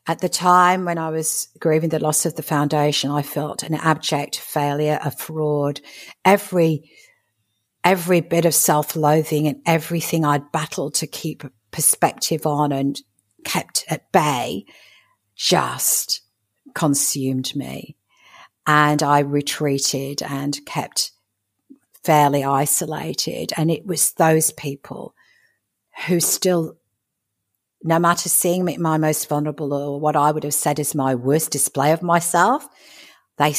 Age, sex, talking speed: 50-69, female, 130 wpm